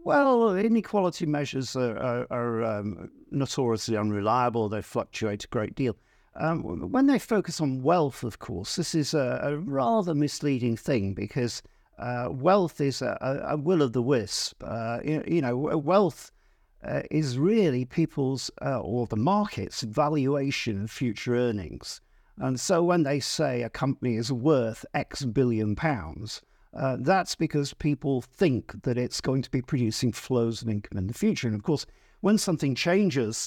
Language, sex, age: English, male, 50-69